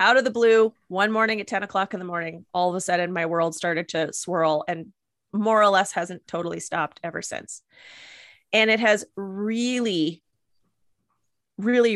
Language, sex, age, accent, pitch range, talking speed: English, female, 30-49, American, 185-215 Hz, 175 wpm